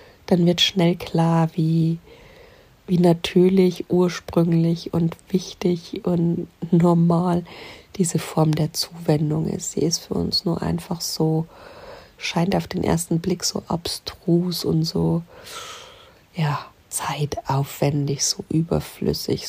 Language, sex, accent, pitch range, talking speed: German, female, German, 150-180 Hz, 110 wpm